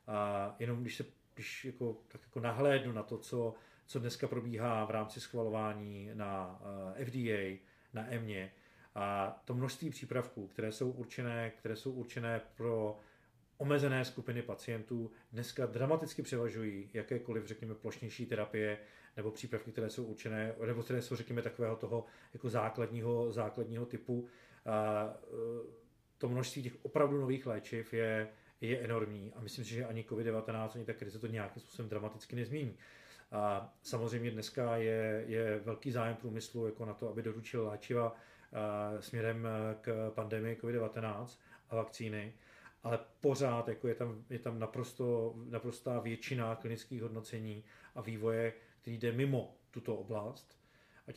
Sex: male